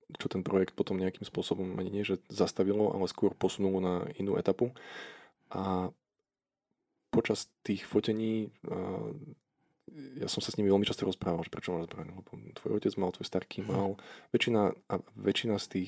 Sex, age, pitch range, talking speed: male, 20-39, 90-105 Hz, 150 wpm